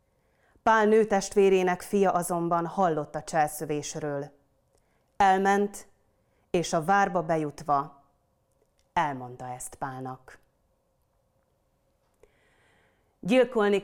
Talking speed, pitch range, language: 70 wpm, 150-195 Hz, Hungarian